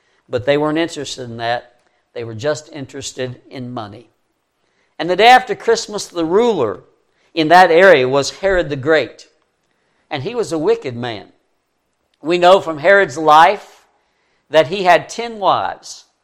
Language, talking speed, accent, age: English, 155 wpm, American, 60-79